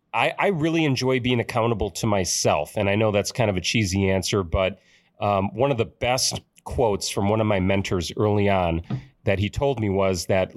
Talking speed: 210 wpm